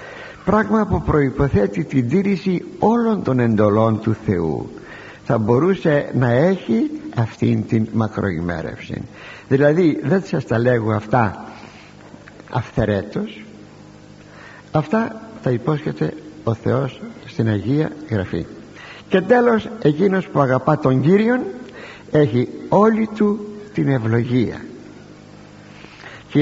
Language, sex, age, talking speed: Greek, male, 60-79, 100 wpm